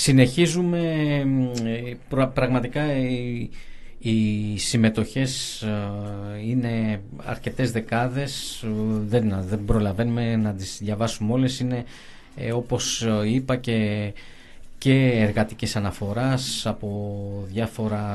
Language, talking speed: Greek, 70 wpm